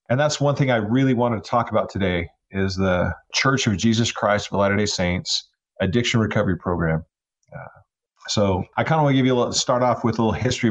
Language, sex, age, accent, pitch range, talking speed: English, male, 40-59, American, 105-125 Hz, 225 wpm